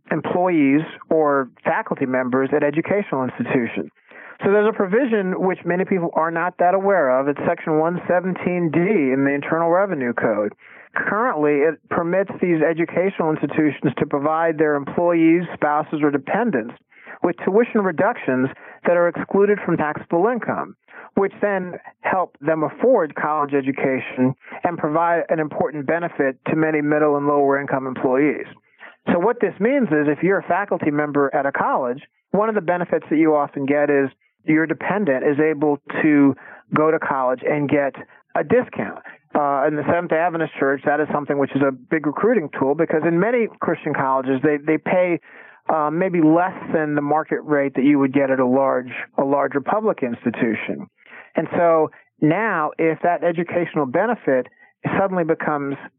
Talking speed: 165 wpm